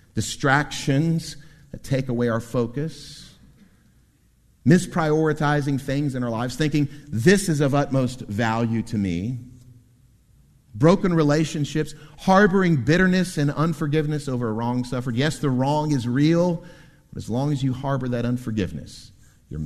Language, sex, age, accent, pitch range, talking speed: English, male, 50-69, American, 105-150 Hz, 130 wpm